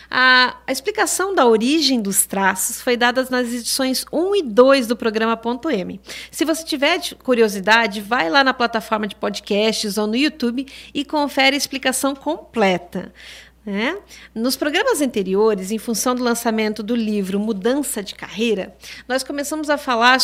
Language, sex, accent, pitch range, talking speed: Portuguese, female, Brazilian, 220-280 Hz, 150 wpm